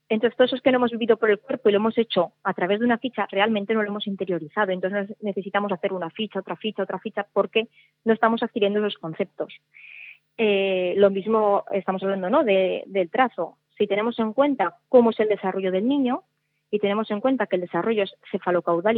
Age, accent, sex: 20-39, Spanish, female